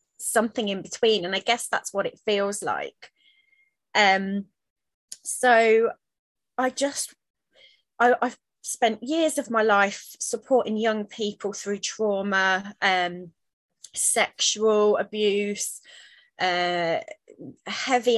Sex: female